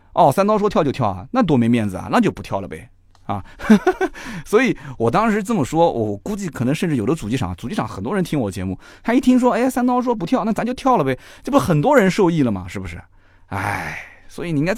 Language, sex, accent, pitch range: Chinese, male, native, 100-150 Hz